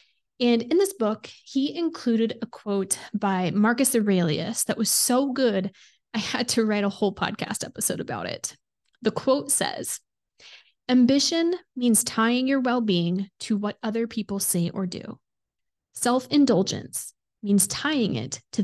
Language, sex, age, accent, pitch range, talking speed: English, female, 20-39, American, 195-245 Hz, 145 wpm